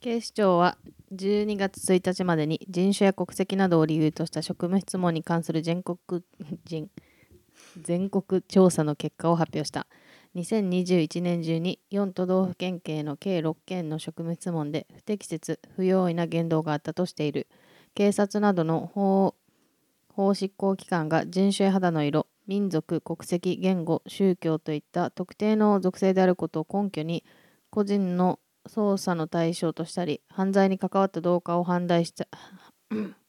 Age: 20-39